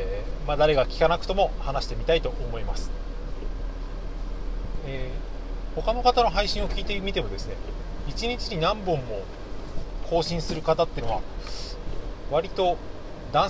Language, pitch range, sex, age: Japanese, 95-160 Hz, male, 30-49